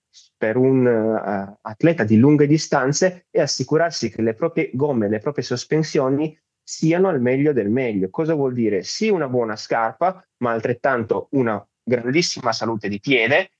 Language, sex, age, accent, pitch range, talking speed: Italian, male, 20-39, native, 115-155 Hz, 155 wpm